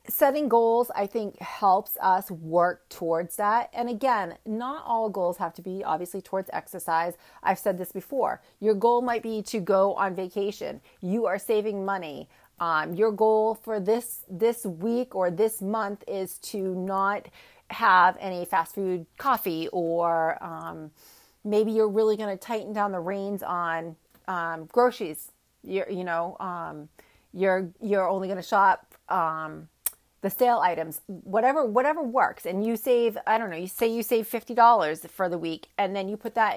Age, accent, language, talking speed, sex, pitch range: 30-49, American, English, 170 wpm, female, 180-230 Hz